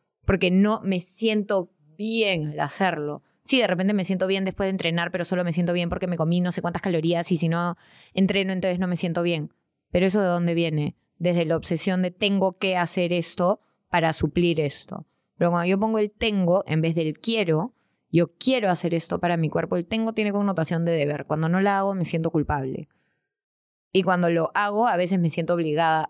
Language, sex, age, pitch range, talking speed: Spanish, female, 20-39, 170-200 Hz, 210 wpm